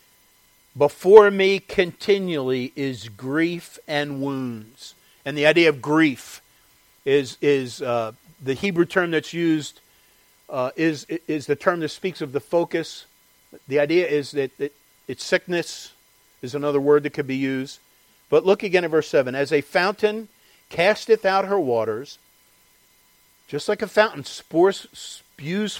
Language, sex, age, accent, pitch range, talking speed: English, male, 50-69, American, 130-195 Hz, 140 wpm